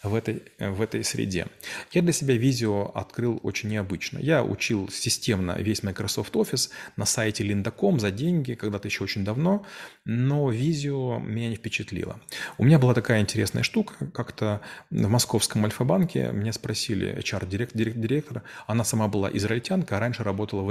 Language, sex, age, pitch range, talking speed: Russian, male, 30-49, 105-125 Hz, 155 wpm